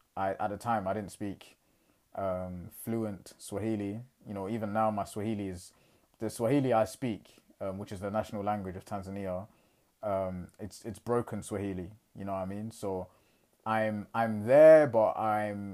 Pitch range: 100-120 Hz